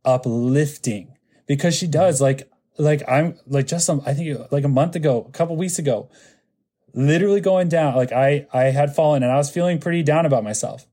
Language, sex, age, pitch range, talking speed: English, male, 20-39, 120-150 Hz, 205 wpm